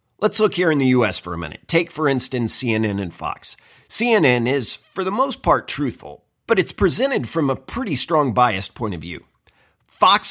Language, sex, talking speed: English, male, 200 wpm